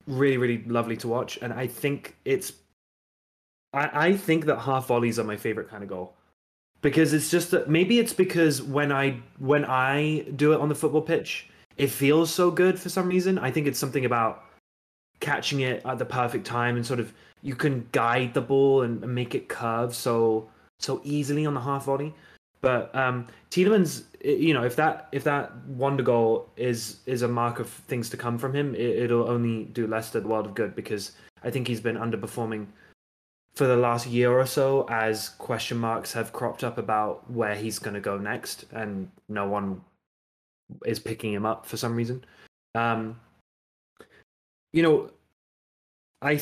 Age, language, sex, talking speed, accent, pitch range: 20-39, English, male, 185 wpm, British, 110-145 Hz